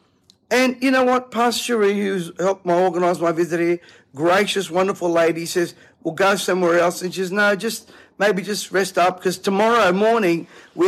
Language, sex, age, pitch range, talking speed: English, male, 50-69, 180-245 Hz, 190 wpm